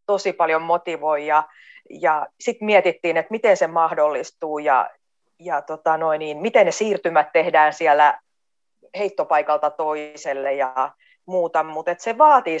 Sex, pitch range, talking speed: female, 155-205 Hz, 135 wpm